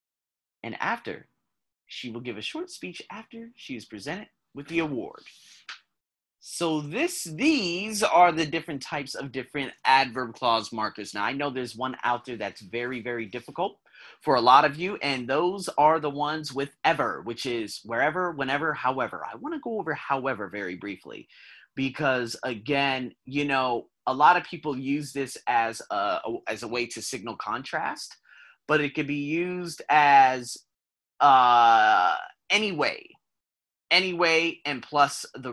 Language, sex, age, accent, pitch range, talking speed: English, male, 30-49, American, 125-205 Hz, 155 wpm